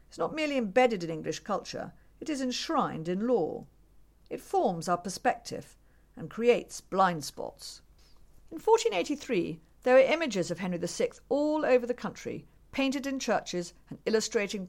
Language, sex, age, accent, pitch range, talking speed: English, female, 50-69, British, 180-260 Hz, 155 wpm